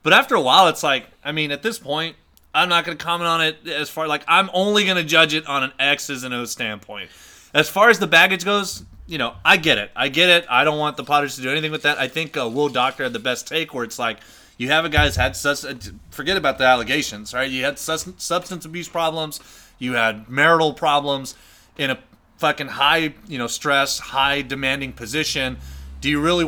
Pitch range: 125-170 Hz